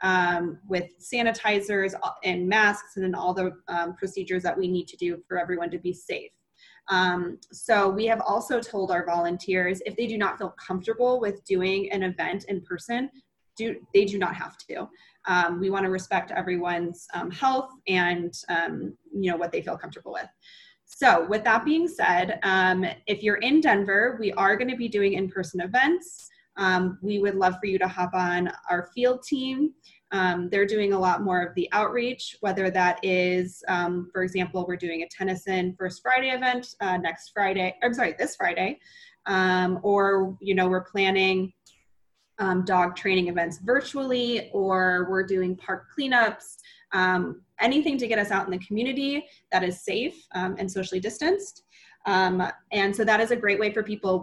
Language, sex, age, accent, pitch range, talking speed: English, female, 20-39, American, 180-225 Hz, 180 wpm